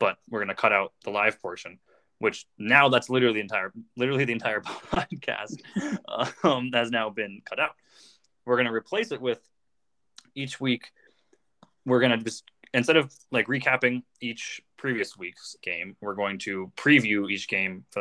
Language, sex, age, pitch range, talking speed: English, male, 20-39, 100-125 Hz, 165 wpm